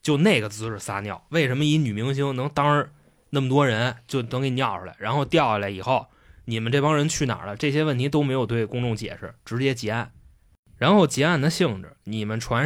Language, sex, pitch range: Chinese, male, 105-150 Hz